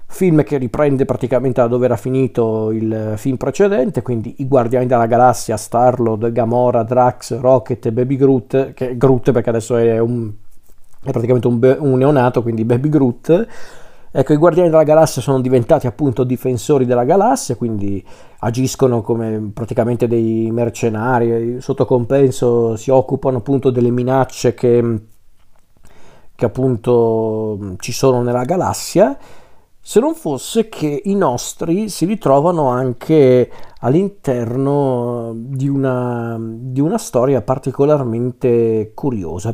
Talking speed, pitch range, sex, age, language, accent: 125 wpm, 115-140 Hz, male, 40-59, Italian, native